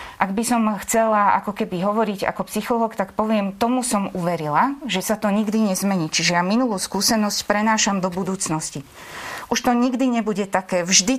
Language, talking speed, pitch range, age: Slovak, 170 wpm, 185-235 Hz, 30-49